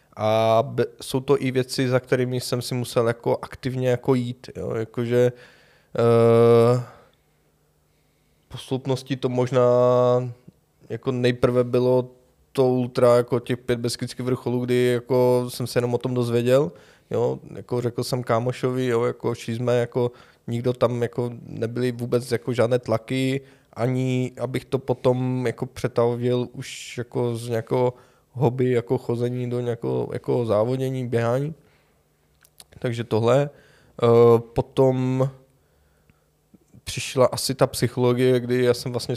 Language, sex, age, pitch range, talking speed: Czech, male, 20-39, 120-130 Hz, 125 wpm